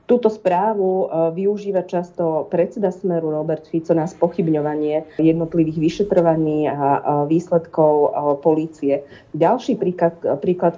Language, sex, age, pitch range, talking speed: Slovak, female, 40-59, 150-180 Hz, 100 wpm